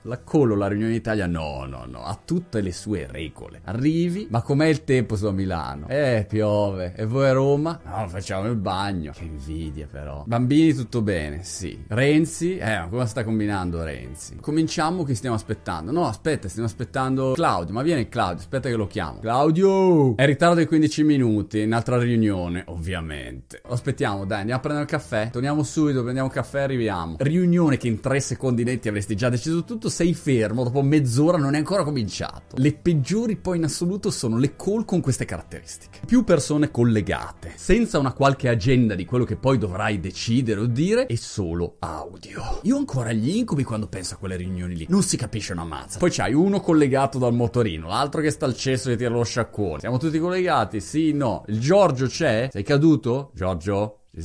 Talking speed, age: 190 wpm, 30-49